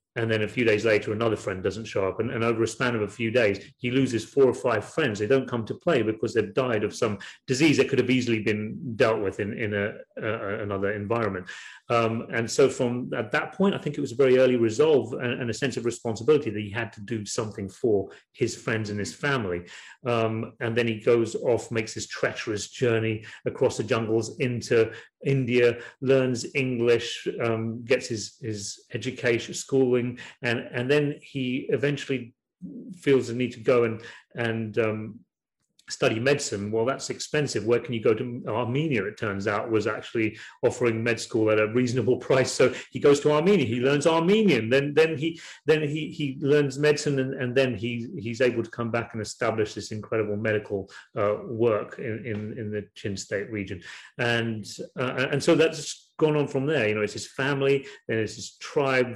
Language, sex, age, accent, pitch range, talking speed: English, male, 30-49, British, 110-135 Hz, 200 wpm